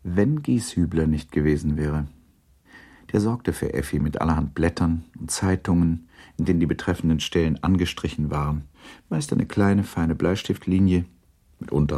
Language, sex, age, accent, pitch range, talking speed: German, male, 50-69, German, 75-90 Hz, 135 wpm